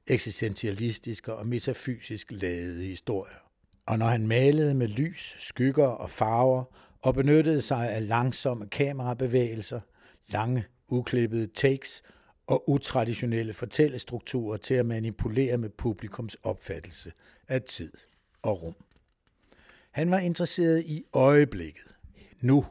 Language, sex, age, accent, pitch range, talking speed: Danish, male, 60-79, native, 110-135 Hz, 110 wpm